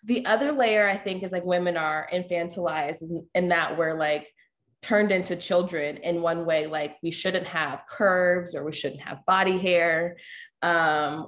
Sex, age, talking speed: female, 20-39, 170 wpm